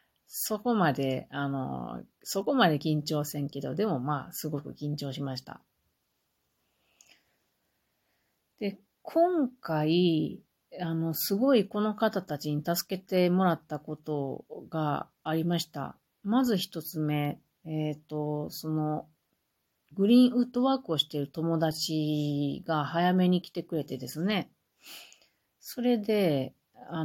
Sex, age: female, 40-59